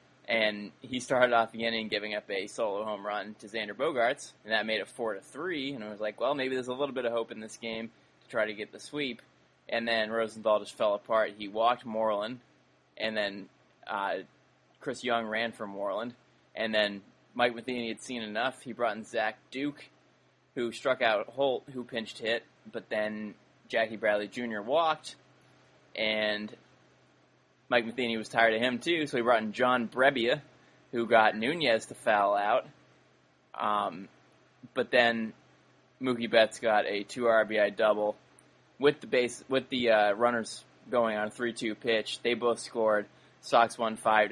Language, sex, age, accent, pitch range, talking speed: English, male, 20-39, American, 110-120 Hz, 180 wpm